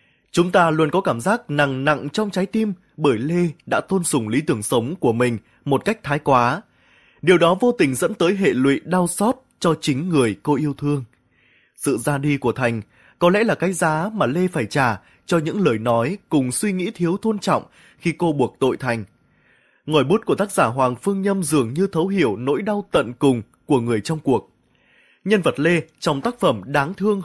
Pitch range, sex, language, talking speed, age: 135-190 Hz, male, Vietnamese, 215 wpm, 20-39